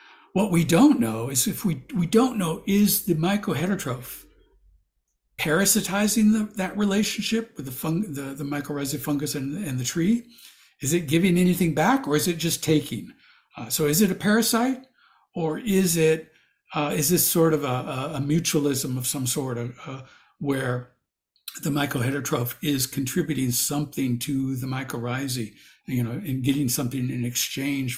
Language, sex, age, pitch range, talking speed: English, male, 60-79, 125-160 Hz, 165 wpm